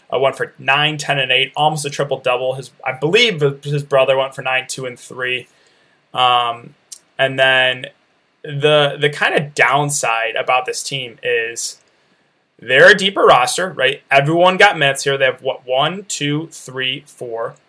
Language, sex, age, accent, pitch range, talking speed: English, male, 20-39, American, 130-160 Hz, 170 wpm